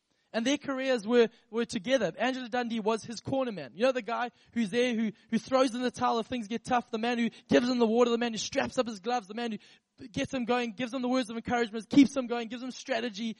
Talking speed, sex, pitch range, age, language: 270 wpm, male, 220-265 Hz, 20-39, English